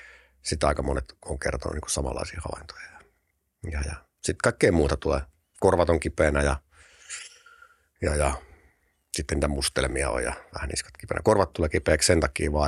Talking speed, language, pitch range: 165 wpm, Finnish, 75-85 Hz